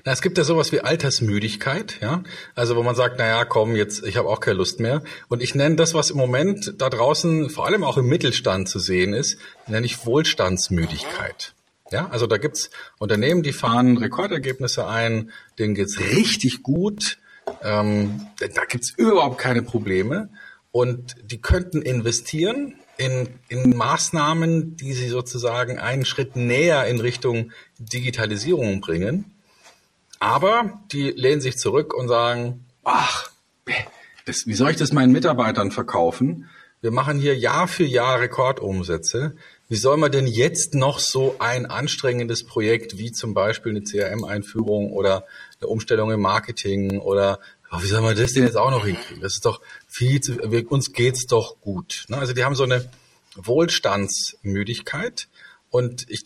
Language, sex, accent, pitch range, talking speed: German, male, German, 110-145 Hz, 165 wpm